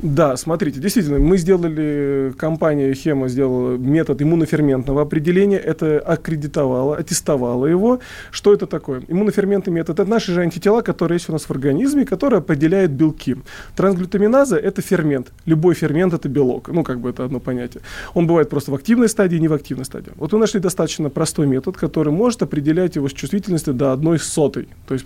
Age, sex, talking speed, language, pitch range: 20-39, male, 180 wpm, Russian, 140-175 Hz